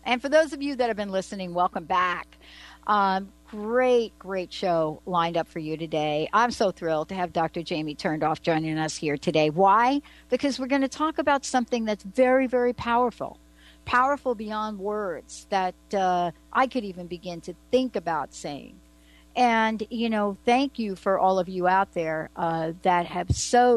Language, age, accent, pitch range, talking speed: English, 60-79, American, 165-225 Hz, 185 wpm